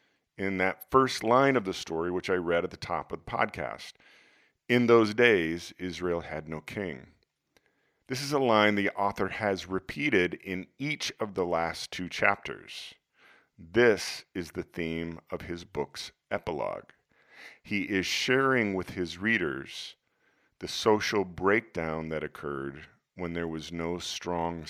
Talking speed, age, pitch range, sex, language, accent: 150 wpm, 40-59, 80-100 Hz, male, English, American